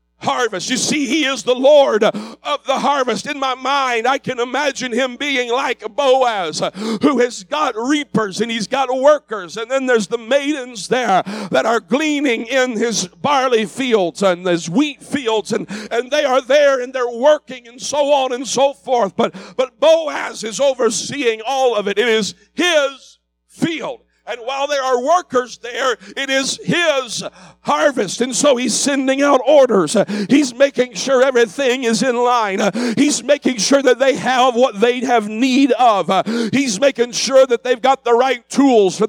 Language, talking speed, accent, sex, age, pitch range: English, 175 wpm, American, male, 50-69, 230-275 Hz